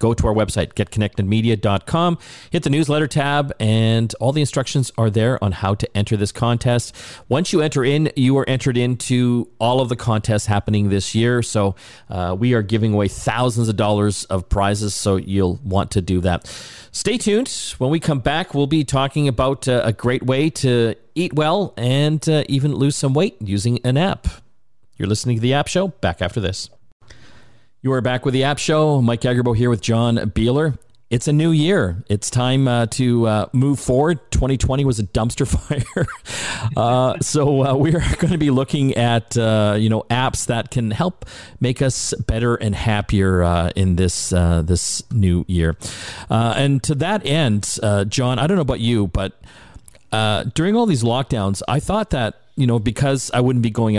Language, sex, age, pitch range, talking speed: English, male, 40-59, 105-135 Hz, 190 wpm